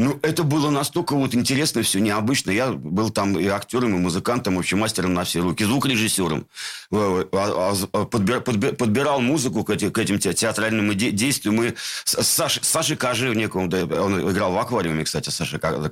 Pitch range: 95-120 Hz